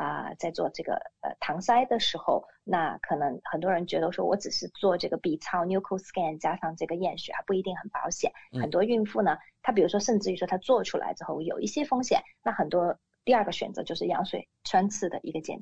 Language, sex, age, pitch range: Chinese, female, 20-39, 185-255 Hz